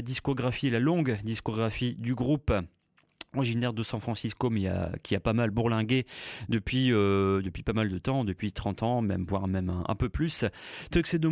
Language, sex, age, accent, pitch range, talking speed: English, male, 30-49, French, 115-145 Hz, 200 wpm